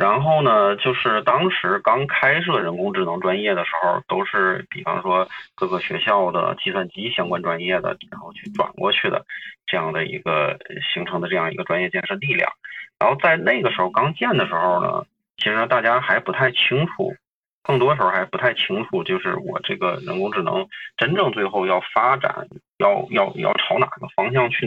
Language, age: Chinese, 20-39